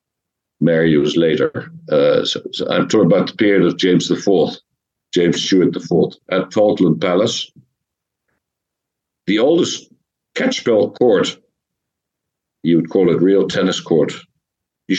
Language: English